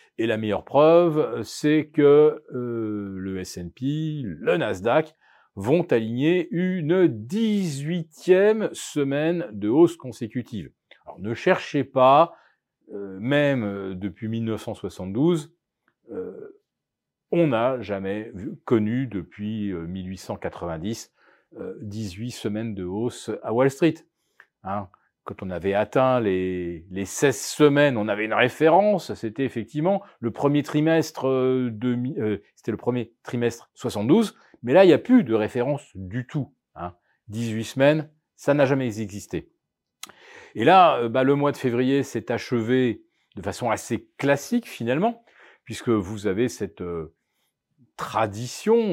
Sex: male